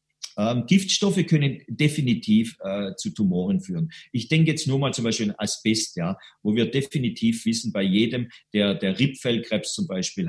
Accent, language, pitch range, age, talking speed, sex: German, German, 115-165 Hz, 50-69, 170 wpm, male